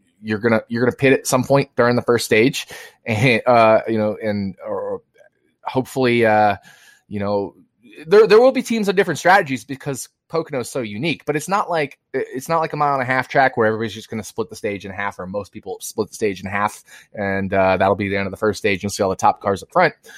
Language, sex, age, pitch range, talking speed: English, male, 20-39, 105-130 Hz, 250 wpm